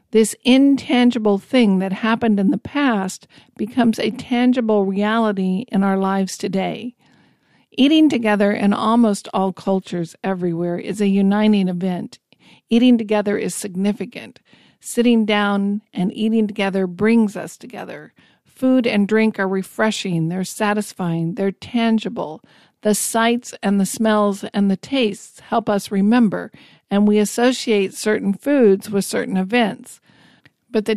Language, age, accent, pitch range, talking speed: English, 50-69, American, 195-235 Hz, 135 wpm